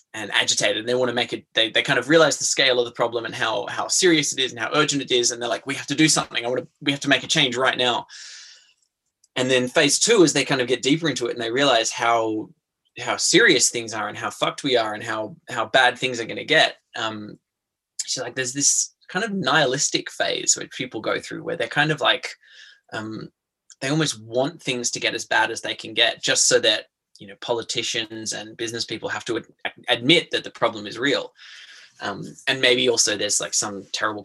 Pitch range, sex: 120-145 Hz, male